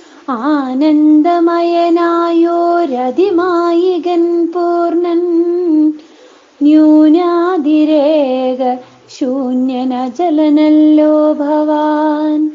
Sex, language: female, Malayalam